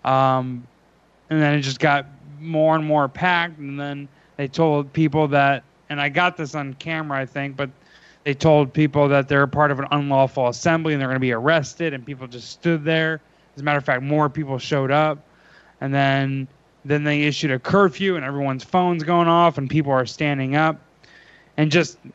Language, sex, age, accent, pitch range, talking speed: English, male, 20-39, American, 140-170 Hz, 200 wpm